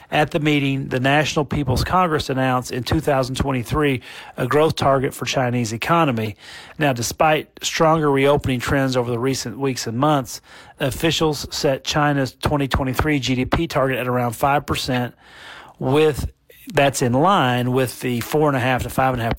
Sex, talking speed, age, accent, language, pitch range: male, 140 wpm, 40-59, American, English, 120-150 Hz